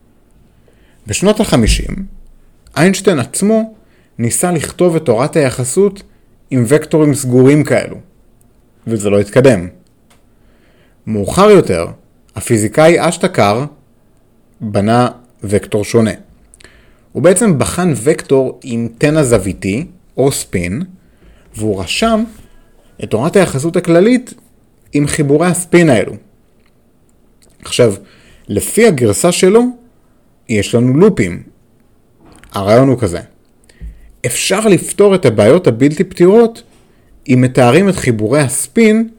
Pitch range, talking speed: 115-180 Hz, 95 wpm